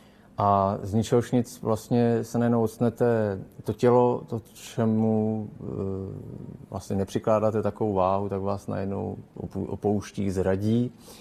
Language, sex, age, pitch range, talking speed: Czech, male, 30-49, 95-115 Hz, 110 wpm